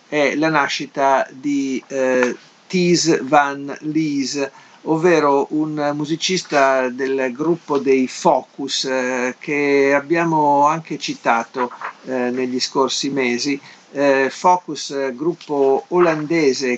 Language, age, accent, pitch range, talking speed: Italian, 50-69, native, 130-160 Hz, 100 wpm